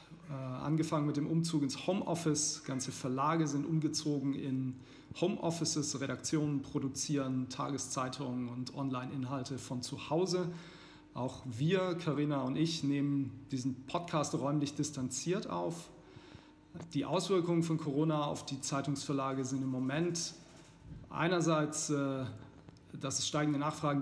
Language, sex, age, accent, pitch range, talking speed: German, male, 40-59, German, 130-155 Hz, 115 wpm